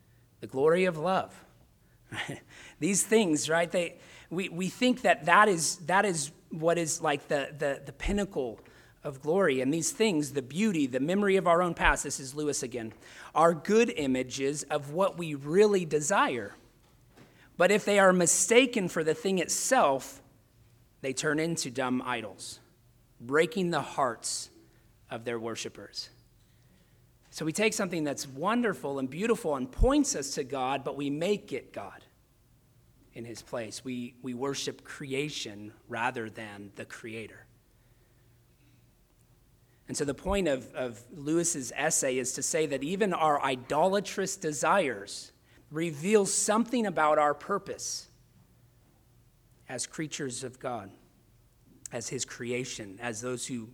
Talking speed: 145 wpm